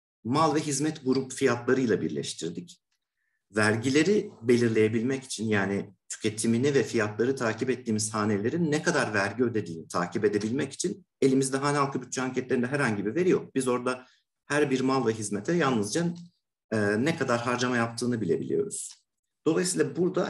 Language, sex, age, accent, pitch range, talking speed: Turkish, male, 50-69, native, 105-140 Hz, 140 wpm